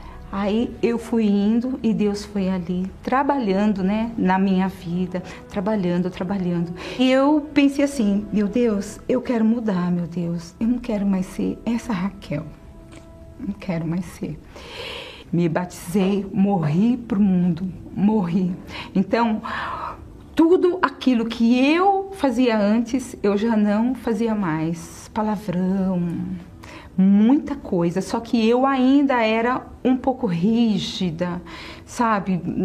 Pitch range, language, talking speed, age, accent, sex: 185-240 Hz, Portuguese, 125 wpm, 40-59, Brazilian, female